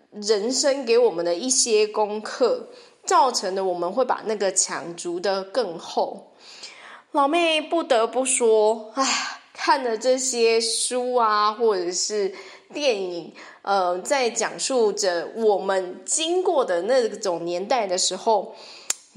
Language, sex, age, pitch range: Chinese, female, 20-39, 195-270 Hz